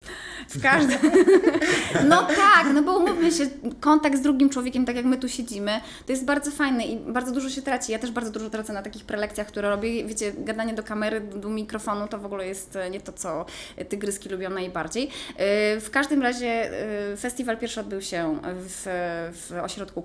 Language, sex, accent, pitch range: Polish, female, native, 180-250 Hz